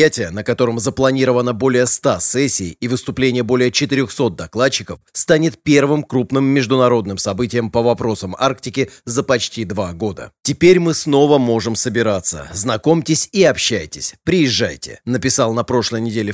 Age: 30-49